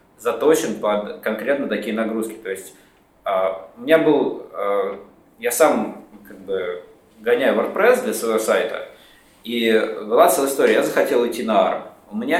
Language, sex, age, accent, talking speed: Russian, male, 20-39, native, 145 wpm